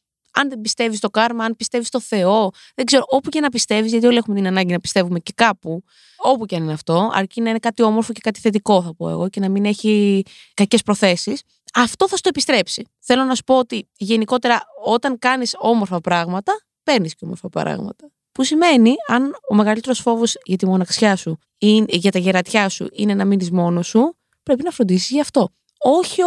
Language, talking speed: Greek, 205 wpm